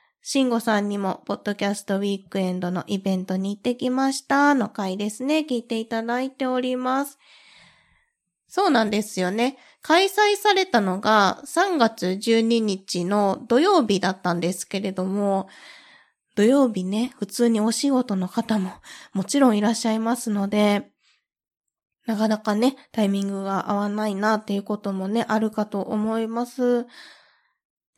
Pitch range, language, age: 190-255 Hz, Japanese, 20-39